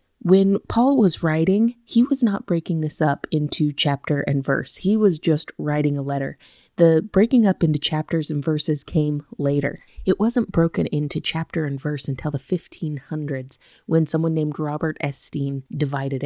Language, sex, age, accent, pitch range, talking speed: English, female, 30-49, American, 150-185 Hz, 165 wpm